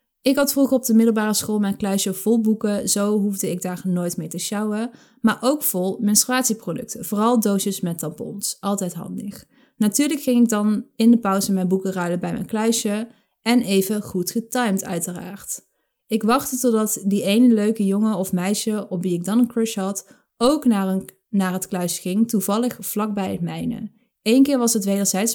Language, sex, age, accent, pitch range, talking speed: Dutch, female, 20-39, Dutch, 190-230 Hz, 185 wpm